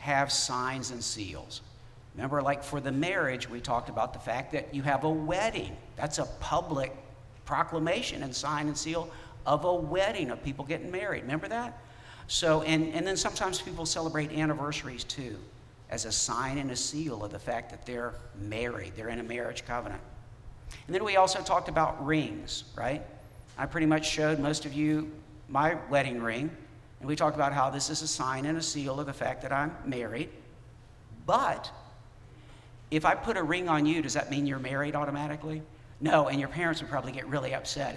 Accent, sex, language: American, male, English